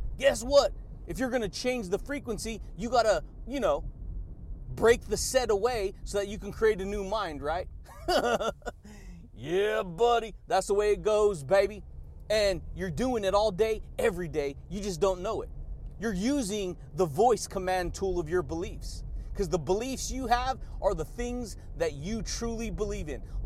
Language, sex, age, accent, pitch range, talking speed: English, male, 30-49, American, 185-230 Hz, 180 wpm